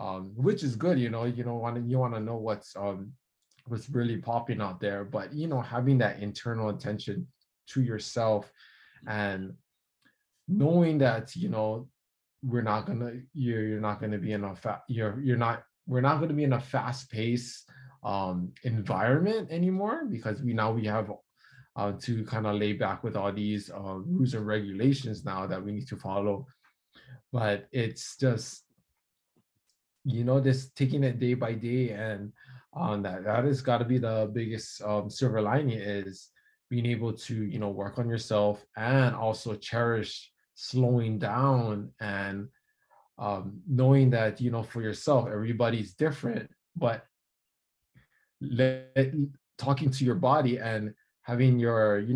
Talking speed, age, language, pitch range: 170 wpm, 20-39, English, 105-130 Hz